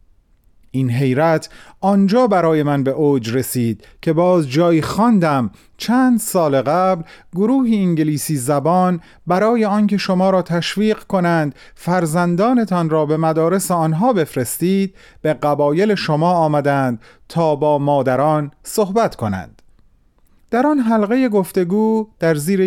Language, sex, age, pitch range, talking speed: Persian, male, 30-49, 135-205 Hz, 120 wpm